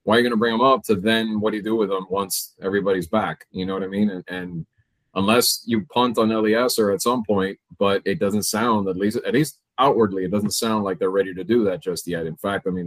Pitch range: 95-115 Hz